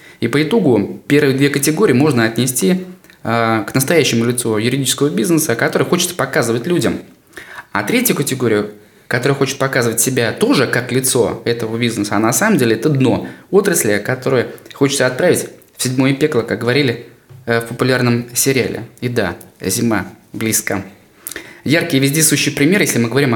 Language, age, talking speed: Russian, 20-39, 150 wpm